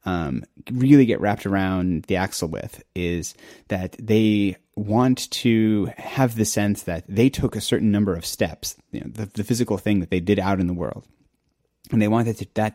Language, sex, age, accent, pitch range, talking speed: English, male, 30-49, American, 95-110 Hz, 185 wpm